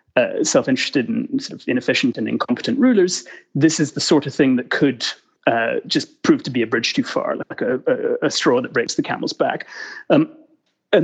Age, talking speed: 30-49, 205 wpm